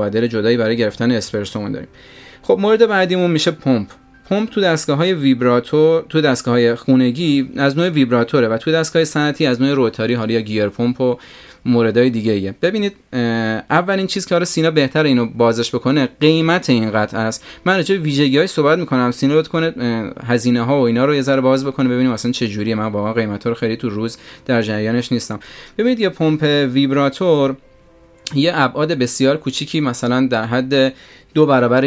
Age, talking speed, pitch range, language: 30-49, 175 wpm, 115-150 Hz, Persian